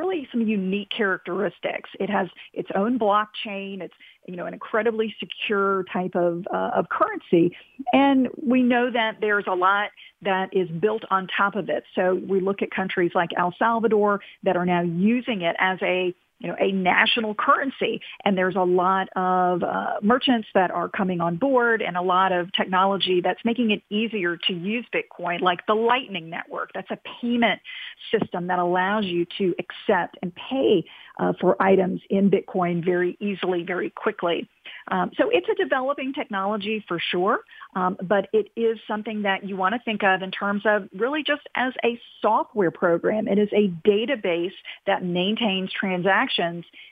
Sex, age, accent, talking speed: female, 40-59, American, 175 wpm